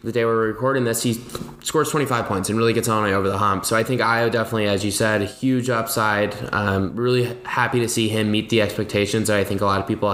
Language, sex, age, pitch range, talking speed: English, male, 10-29, 105-120 Hz, 265 wpm